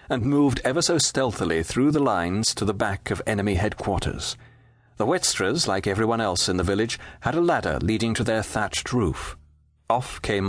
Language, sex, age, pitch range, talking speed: English, male, 40-59, 90-125 Hz, 185 wpm